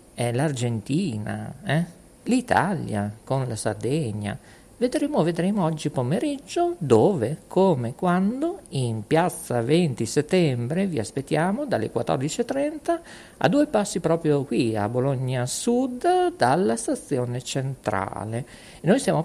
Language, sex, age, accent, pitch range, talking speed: Italian, male, 50-69, native, 120-180 Hz, 105 wpm